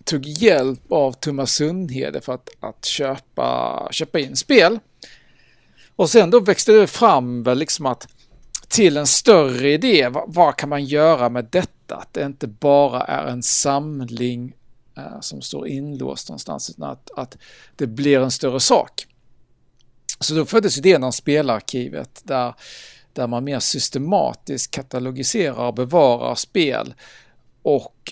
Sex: male